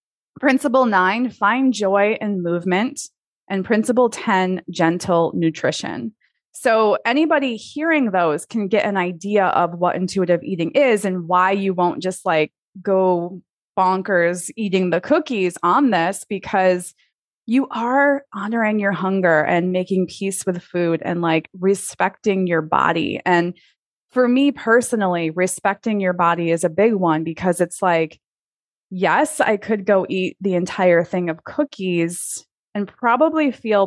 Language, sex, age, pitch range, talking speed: English, female, 20-39, 180-230 Hz, 140 wpm